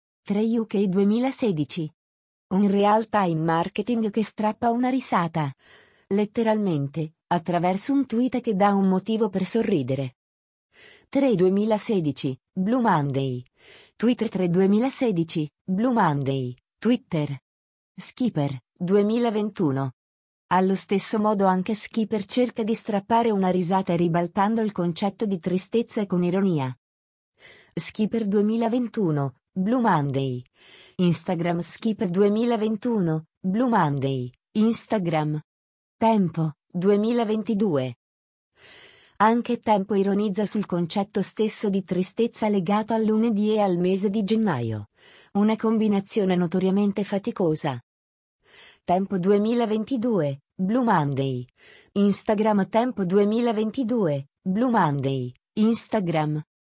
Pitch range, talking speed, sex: 160-220 Hz, 95 wpm, female